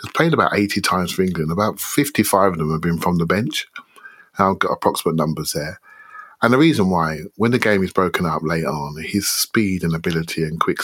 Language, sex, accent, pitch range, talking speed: English, male, British, 85-120 Hz, 220 wpm